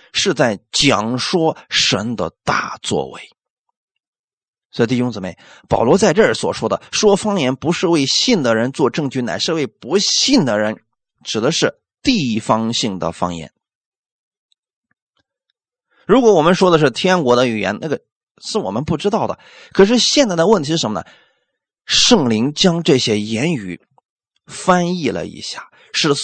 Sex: male